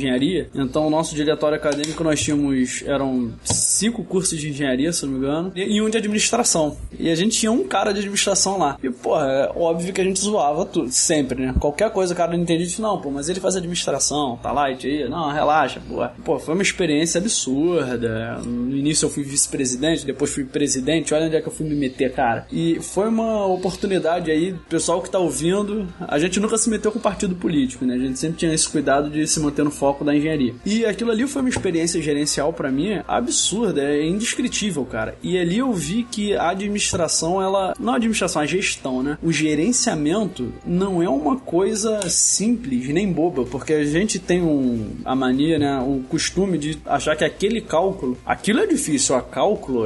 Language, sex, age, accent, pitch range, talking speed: Portuguese, male, 20-39, Brazilian, 145-195 Hz, 205 wpm